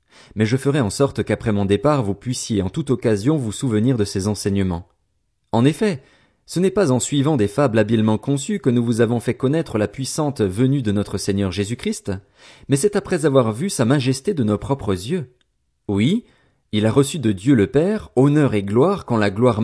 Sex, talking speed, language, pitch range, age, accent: male, 205 wpm, French, 105-140 Hz, 40-59, French